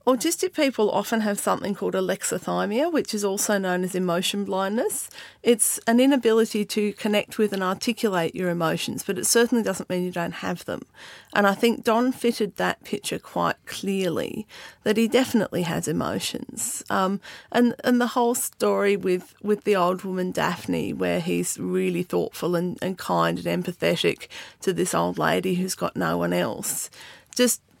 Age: 40-59